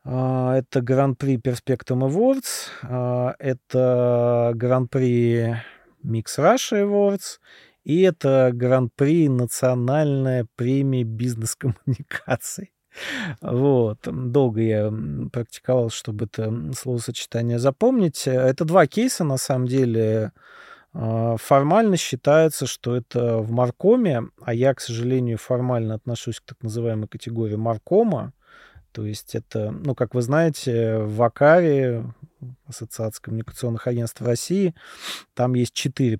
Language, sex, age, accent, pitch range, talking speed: Russian, male, 30-49, native, 115-135 Hz, 105 wpm